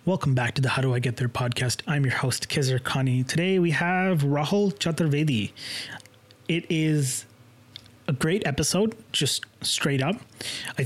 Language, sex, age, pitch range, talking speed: English, male, 20-39, 130-150 Hz, 155 wpm